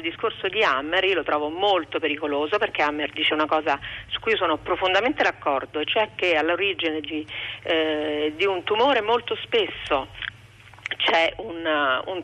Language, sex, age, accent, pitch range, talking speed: Italian, female, 40-59, native, 150-185 Hz, 165 wpm